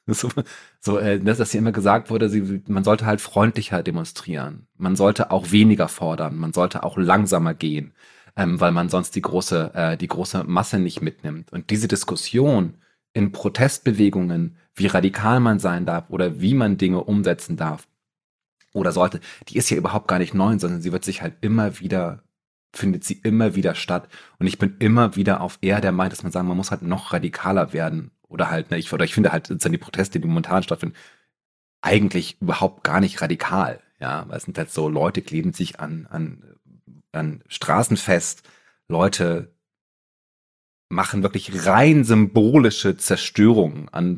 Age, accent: 30-49, German